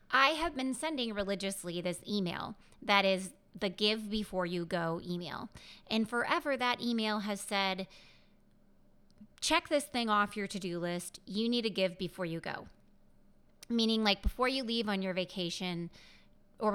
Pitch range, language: 185-235 Hz, English